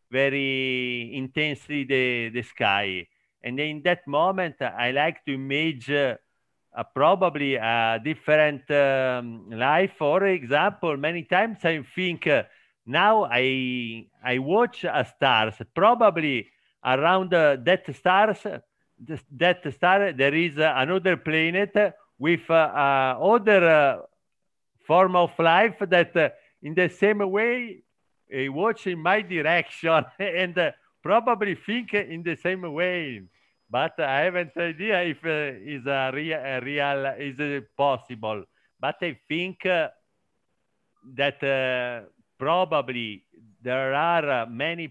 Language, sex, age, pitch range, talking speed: Portuguese, male, 50-69, 130-180 Hz, 125 wpm